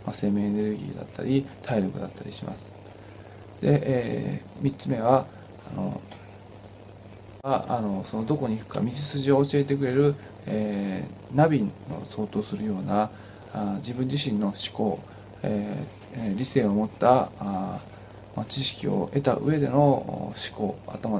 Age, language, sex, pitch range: 20-39, Japanese, male, 100-135 Hz